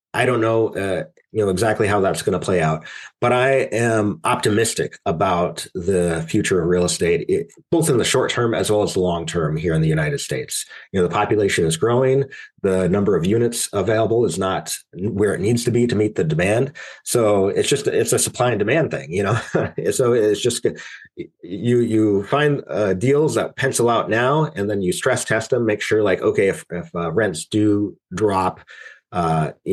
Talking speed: 205 wpm